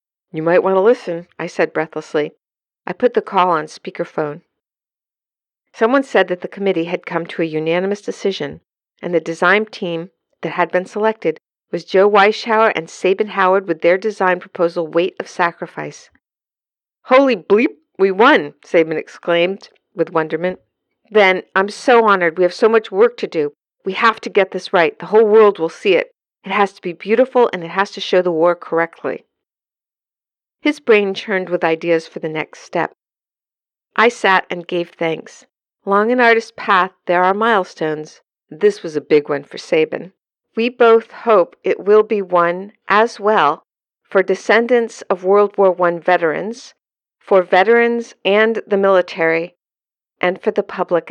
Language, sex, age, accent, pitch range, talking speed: English, female, 50-69, American, 170-220 Hz, 170 wpm